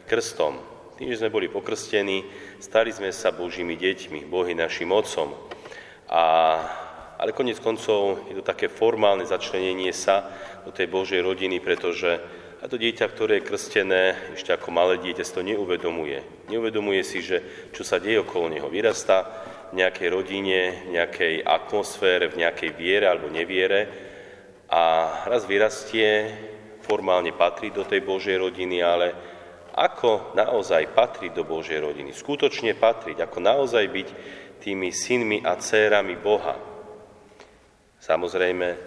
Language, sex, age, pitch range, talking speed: Slovak, male, 30-49, 85-110 Hz, 135 wpm